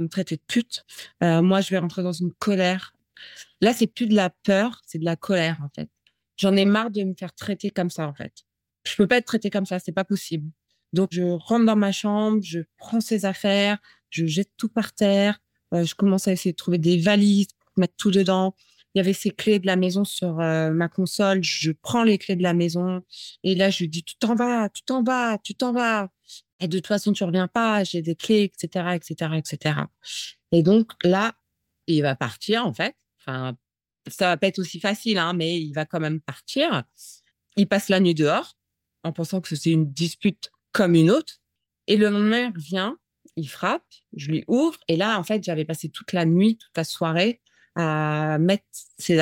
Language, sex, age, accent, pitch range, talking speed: French, female, 30-49, French, 165-205 Hz, 220 wpm